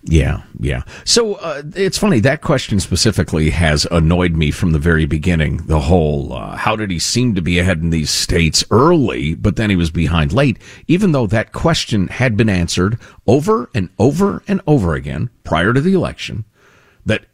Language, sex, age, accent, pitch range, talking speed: English, male, 50-69, American, 85-135 Hz, 185 wpm